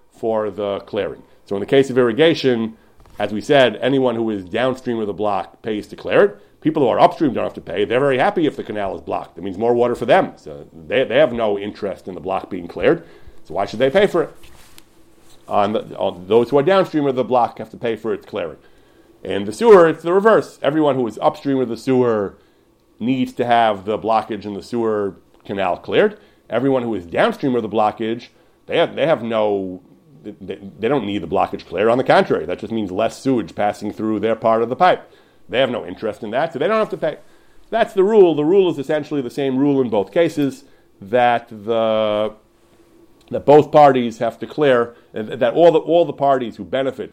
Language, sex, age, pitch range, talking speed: English, male, 40-59, 110-145 Hz, 225 wpm